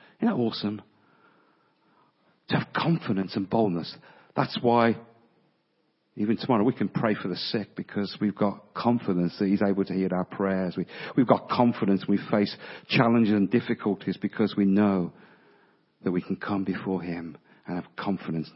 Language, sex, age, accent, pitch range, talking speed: English, male, 50-69, British, 95-125 Hz, 165 wpm